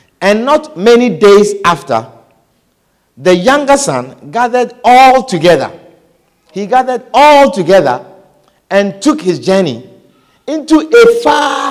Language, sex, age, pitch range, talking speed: English, male, 50-69, 180-280 Hz, 115 wpm